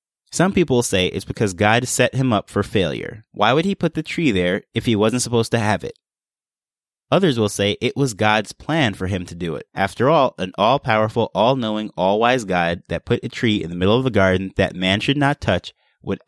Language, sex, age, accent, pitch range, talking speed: English, male, 20-39, American, 95-135 Hz, 225 wpm